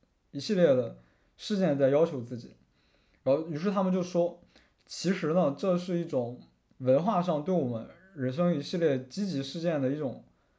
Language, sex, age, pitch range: Chinese, male, 20-39, 135-205 Hz